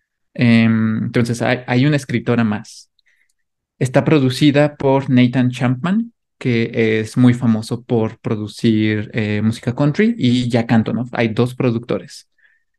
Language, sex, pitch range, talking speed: English, male, 115-140 Hz, 115 wpm